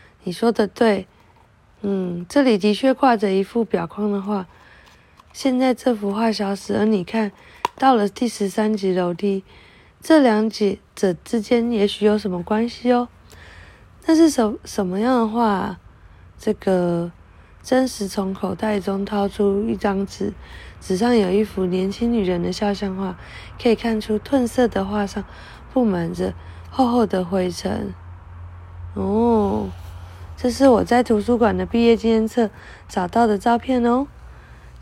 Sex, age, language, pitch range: female, 20-39, Chinese, 190-235 Hz